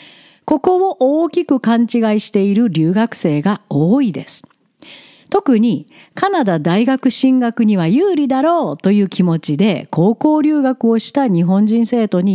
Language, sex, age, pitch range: Japanese, female, 50-69, 175-255 Hz